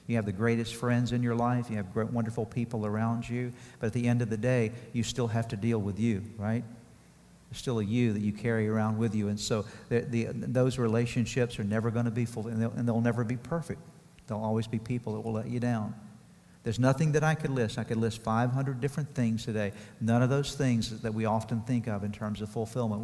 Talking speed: 240 wpm